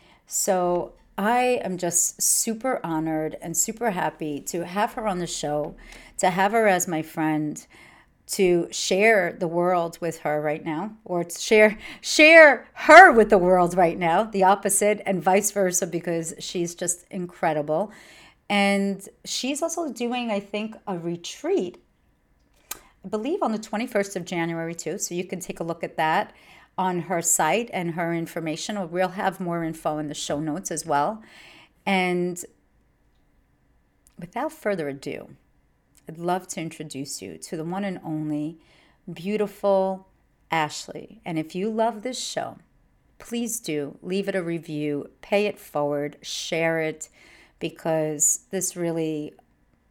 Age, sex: 40-59, female